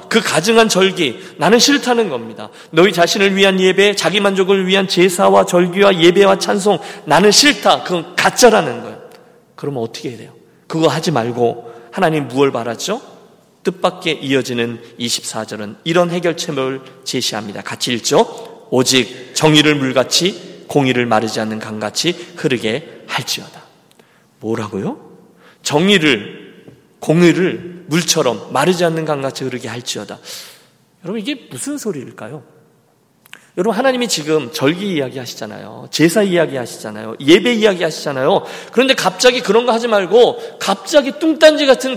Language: Korean